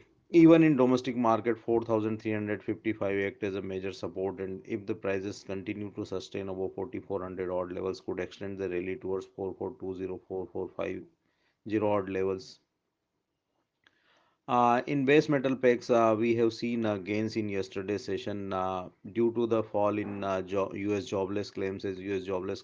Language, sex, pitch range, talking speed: English, male, 95-115 Hz, 155 wpm